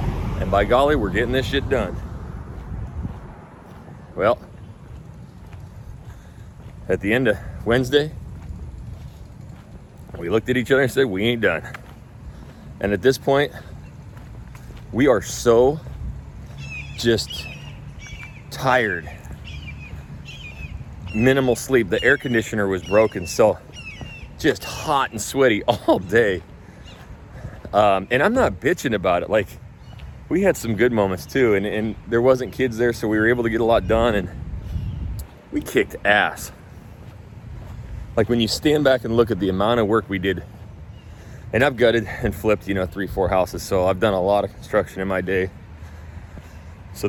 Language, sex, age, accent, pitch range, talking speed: English, male, 40-59, American, 90-115 Hz, 145 wpm